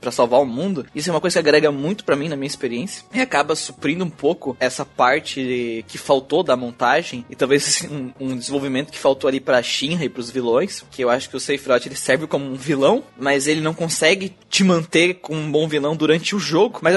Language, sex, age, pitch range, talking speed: Portuguese, male, 20-39, 130-170 Hz, 235 wpm